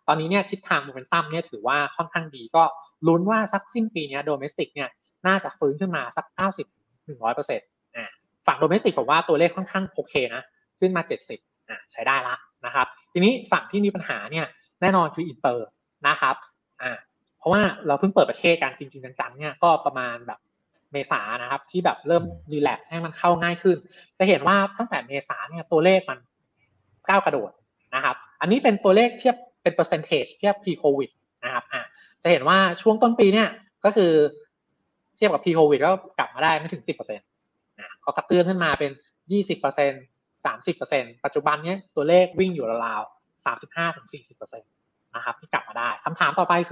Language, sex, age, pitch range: Thai, male, 20-39, 150-190 Hz